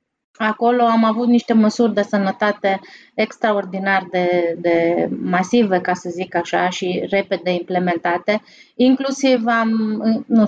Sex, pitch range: female, 205-240 Hz